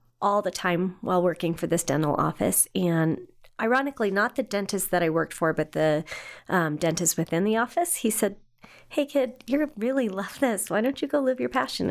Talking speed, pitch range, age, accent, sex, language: 200 wpm, 175-225 Hz, 30-49, American, female, English